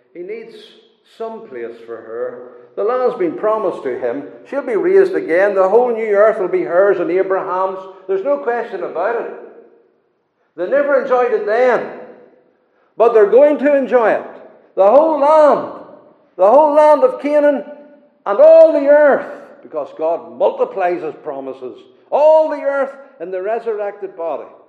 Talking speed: 160 wpm